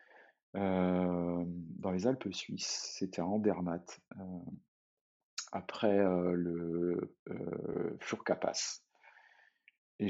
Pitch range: 85-95 Hz